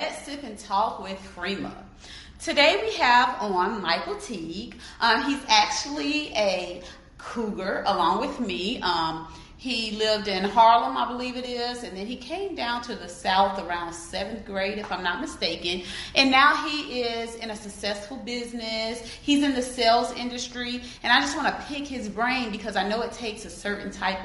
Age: 30-49